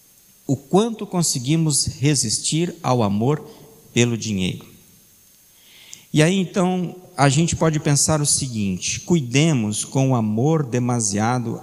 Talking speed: 115 wpm